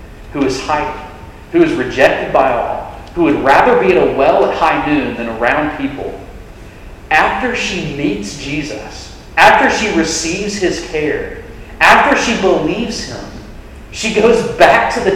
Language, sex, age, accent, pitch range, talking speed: English, male, 40-59, American, 145-205 Hz, 155 wpm